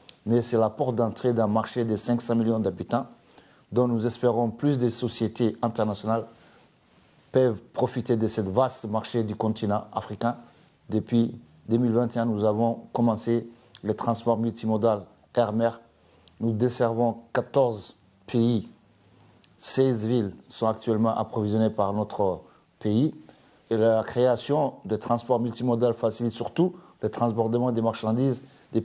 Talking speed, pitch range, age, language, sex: 130 wpm, 110-125 Hz, 60-79, French, male